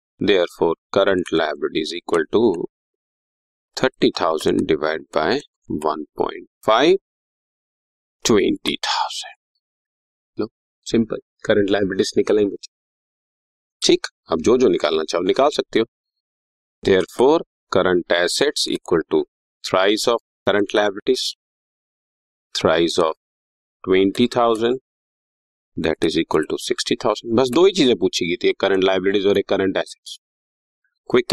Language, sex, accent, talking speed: English, male, Indian, 120 wpm